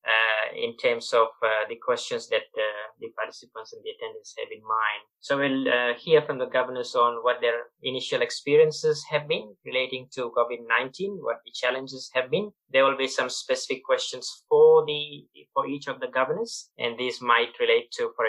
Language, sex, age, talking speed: English, male, 20-39, 190 wpm